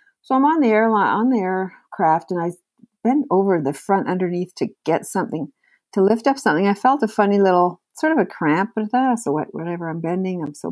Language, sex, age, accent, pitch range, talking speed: English, female, 60-79, American, 175-220 Hz, 235 wpm